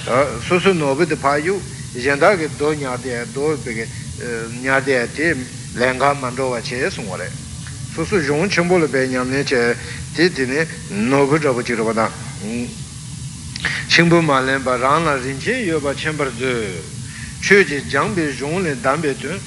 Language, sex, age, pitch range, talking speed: Italian, male, 60-79, 125-160 Hz, 30 wpm